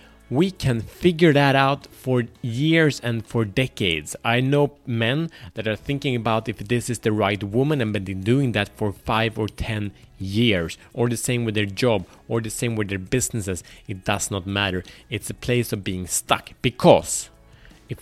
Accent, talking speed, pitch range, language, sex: Norwegian, 185 wpm, 110-140 Hz, Swedish, male